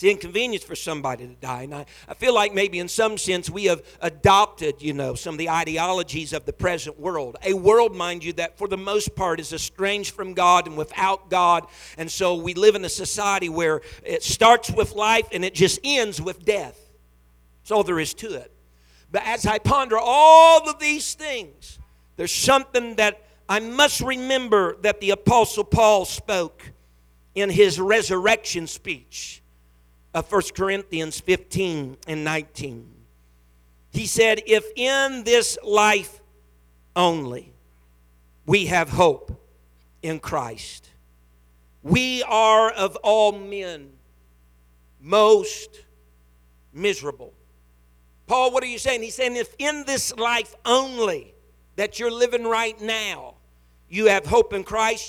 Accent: American